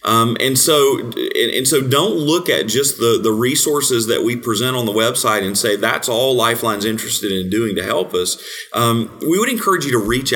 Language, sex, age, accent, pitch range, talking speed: English, male, 30-49, American, 110-125 Hz, 215 wpm